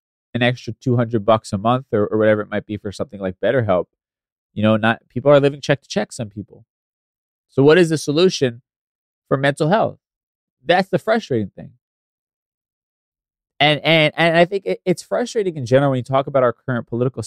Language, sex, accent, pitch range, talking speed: English, male, American, 120-165 Hz, 195 wpm